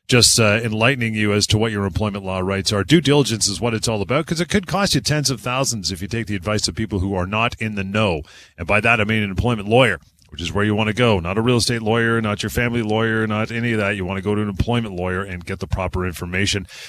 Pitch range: 95-120 Hz